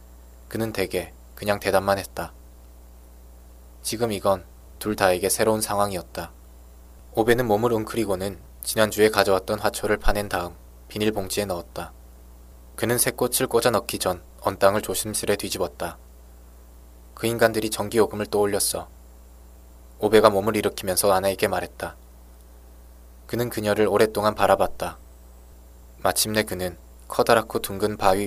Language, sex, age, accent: Korean, male, 20-39, native